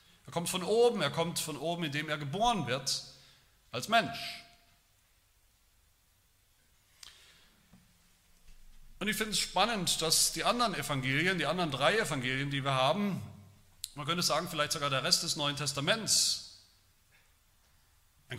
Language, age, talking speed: German, 40-59, 135 wpm